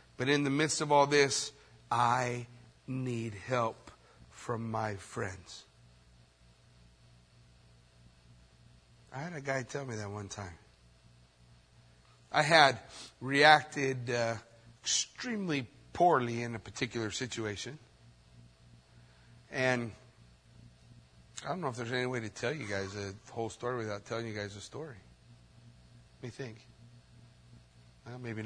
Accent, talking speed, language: American, 120 wpm, English